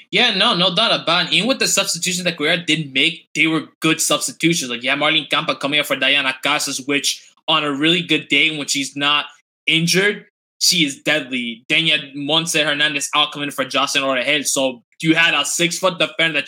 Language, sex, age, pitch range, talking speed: English, male, 20-39, 145-170 Hz, 200 wpm